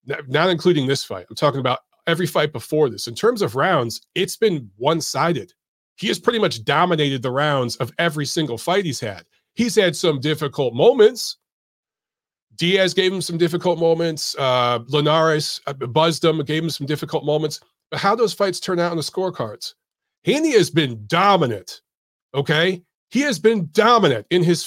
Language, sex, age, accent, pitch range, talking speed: English, male, 40-59, American, 150-200 Hz, 175 wpm